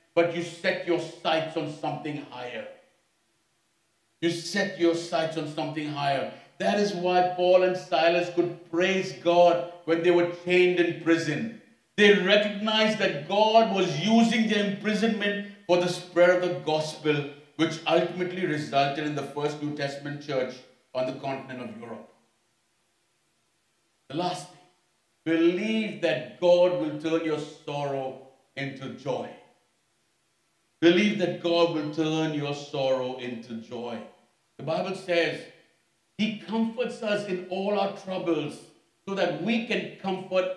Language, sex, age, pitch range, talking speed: English, male, 50-69, 160-215 Hz, 140 wpm